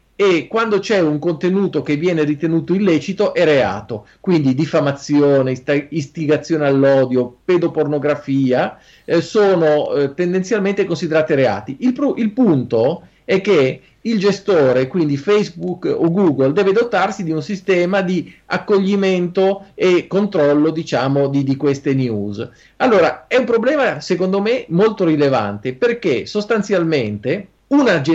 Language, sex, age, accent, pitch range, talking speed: Italian, male, 40-59, native, 140-195 Hz, 125 wpm